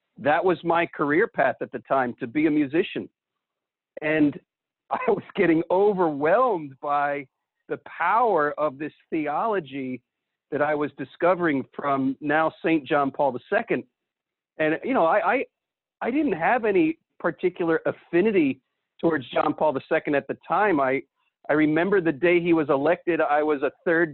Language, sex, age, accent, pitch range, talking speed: English, male, 50-69, American, 145-180 Hz, 155 wpm